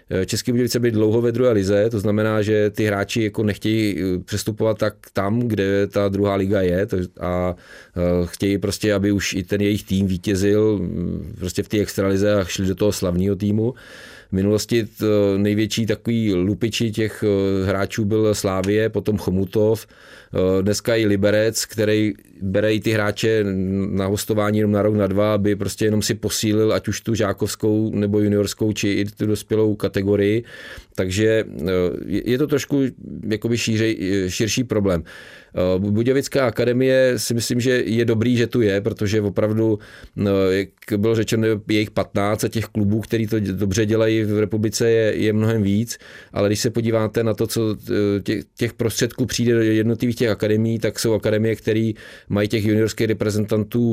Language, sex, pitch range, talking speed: Czech, male, 100-115 Hz, 160 wpm